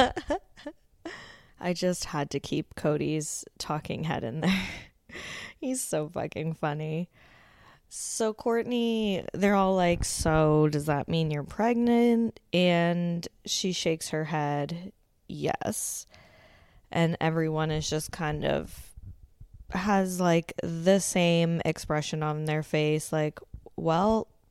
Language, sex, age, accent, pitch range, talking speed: English, female, 10-29, American, 155-185 Hz, 115 wpm